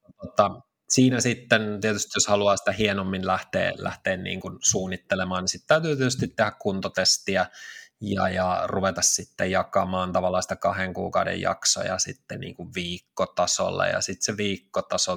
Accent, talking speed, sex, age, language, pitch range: native, 140 wpm, male, 20-39, Finnish, 90-120 Hz